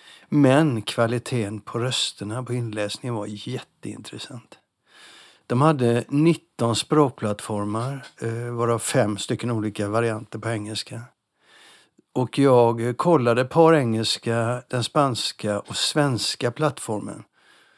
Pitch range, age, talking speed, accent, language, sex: 115-145 Hz, 60-79, 100 wpm, native, Swedish, male